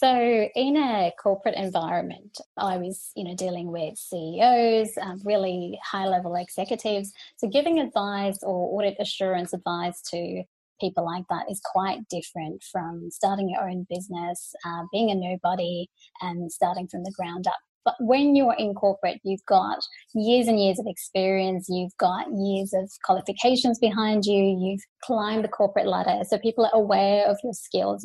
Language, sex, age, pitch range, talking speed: English, female, 20-39, 190-235 Hz, 165 wpm